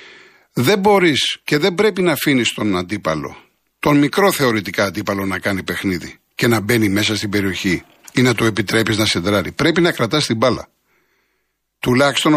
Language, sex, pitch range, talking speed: Greek, male, 110-150 Hz, 165 wpm